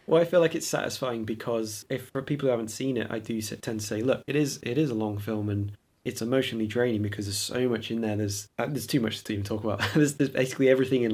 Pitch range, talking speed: 105-125 Hz, 275 wpm